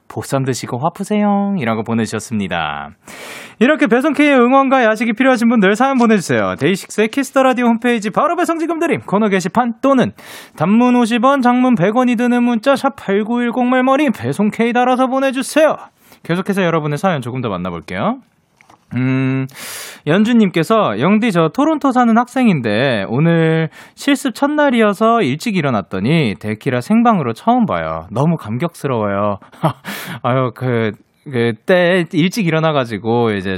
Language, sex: Korean, male